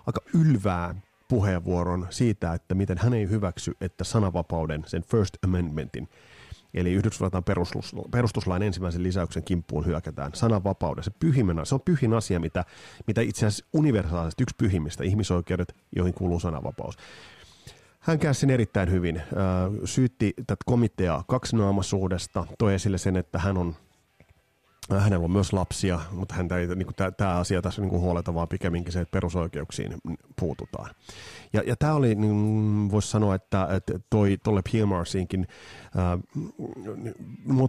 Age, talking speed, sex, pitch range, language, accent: 30-49, 130 wpm, male, 90-115 Hz, Finnish, native